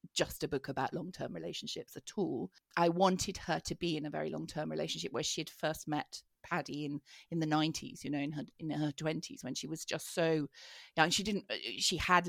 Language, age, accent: English, 40-59, British